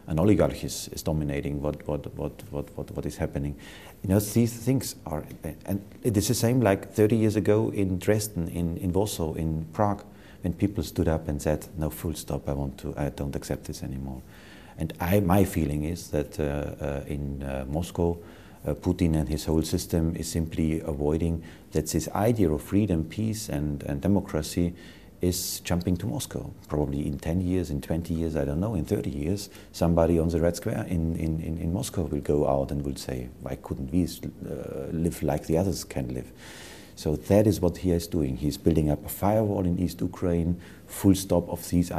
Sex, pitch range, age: male, 75-100 Hz, 40-59